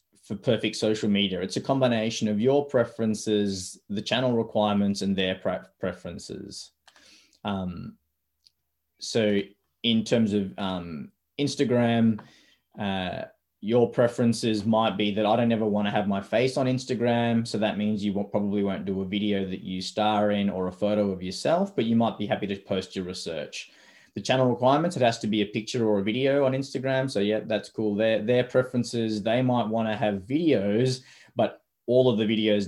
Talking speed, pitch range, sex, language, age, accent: 180 wpm, 100-115 Hz, male, English, 20-39, Australian